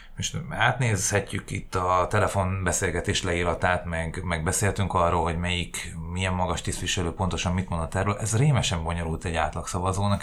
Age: 30-49